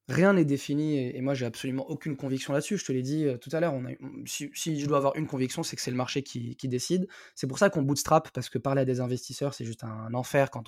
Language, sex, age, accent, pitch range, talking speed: French, male, 20-39, French, 125-150 Hz, 305 wpm